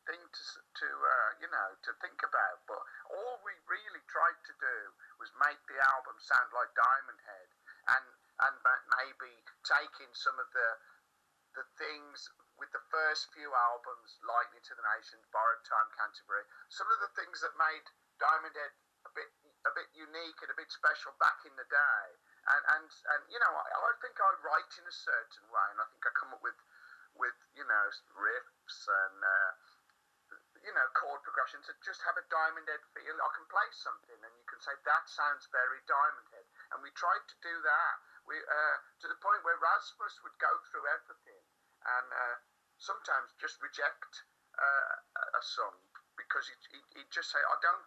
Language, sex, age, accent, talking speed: English, male, 50-69, British, 190 wpm